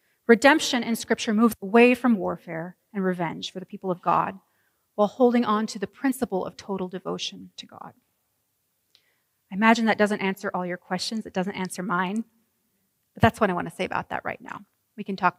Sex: female